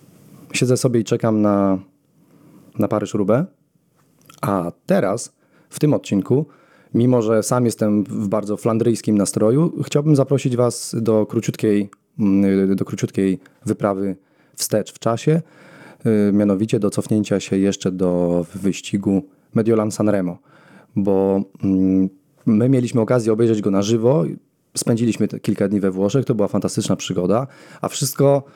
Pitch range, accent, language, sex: 100-120 Hz, native, Polish, male